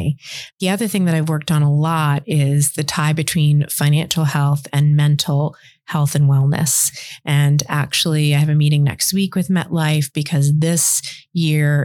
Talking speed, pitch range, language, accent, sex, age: 165 wpm, 145-160 Hz, English, American, female, 30-49